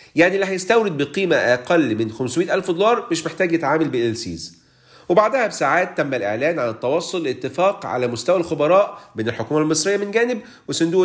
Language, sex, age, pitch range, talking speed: Arabic, male, 40-59, 145-200 Hz, 160 wpm